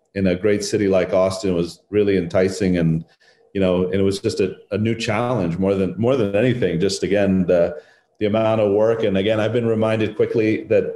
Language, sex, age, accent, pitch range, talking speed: English, male, 40-59, American, 95-110 Hz, 215 wpm